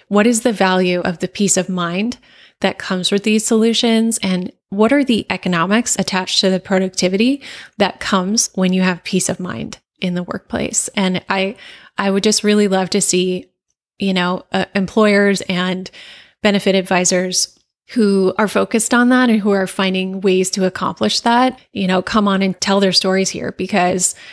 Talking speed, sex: 180 wpm, female